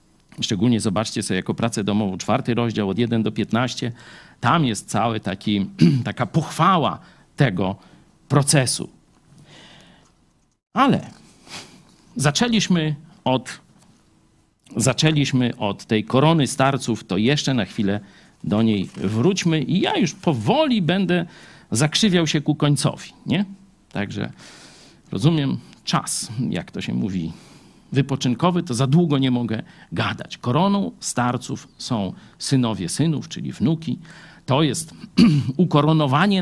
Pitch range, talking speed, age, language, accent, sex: 120-175 Hz, 115 wpm, 50-69, Polish, native, male